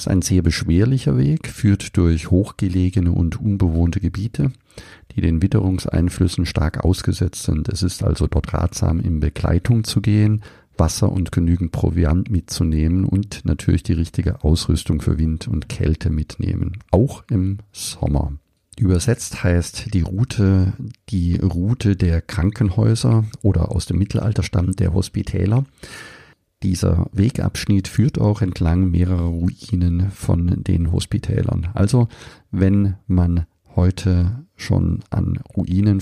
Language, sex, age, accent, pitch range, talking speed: German, male, 50-69, German, 85-105 Hz, 130 wpm